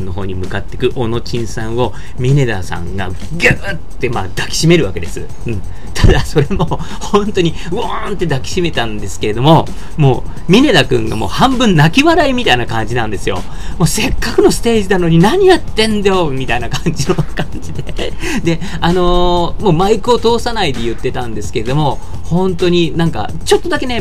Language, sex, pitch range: Japanese, male, 110-180 Hz